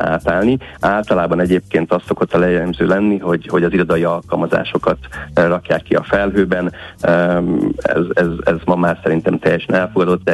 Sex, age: male, 30-49